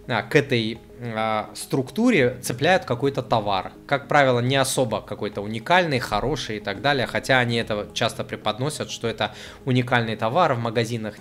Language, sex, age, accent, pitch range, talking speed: Russian, male, 20-39, native, 110-130 Hz, 150 wpm